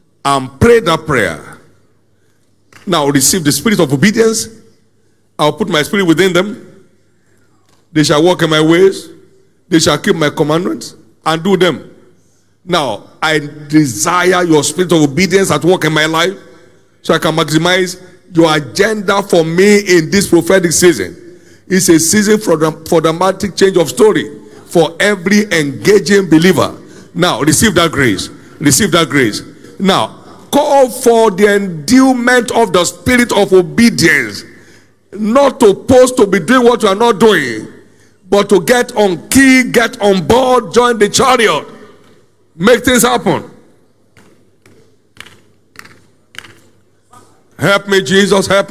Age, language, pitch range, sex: 50-69, English, 160-210 Hz, male